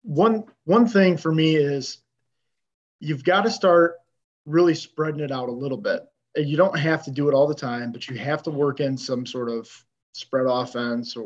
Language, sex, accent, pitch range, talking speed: English, male, American, 120-155 Hz, 205 wpm